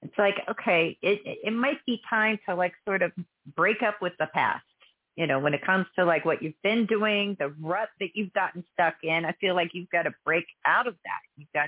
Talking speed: 240 wpm